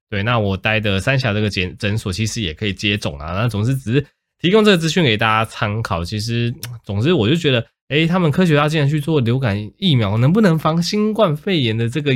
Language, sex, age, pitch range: Chinese, male, 20-39, 105-145 Hz